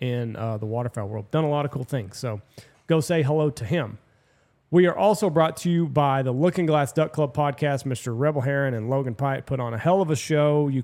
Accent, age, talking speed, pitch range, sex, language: American, 30-49, 245 wpm, 125-155 Hz, male, English